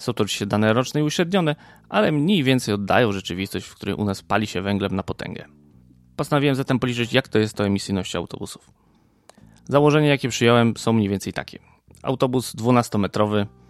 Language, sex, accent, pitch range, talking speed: Polish, male, native, 100-130 Hz, 170 wpm